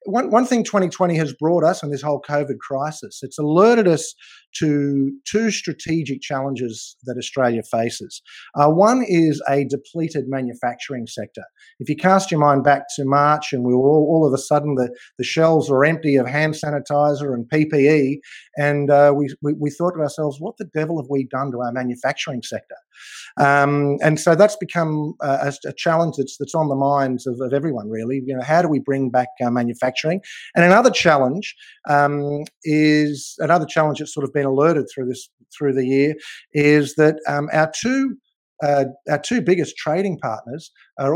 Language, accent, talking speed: English, Australian, 185 wpm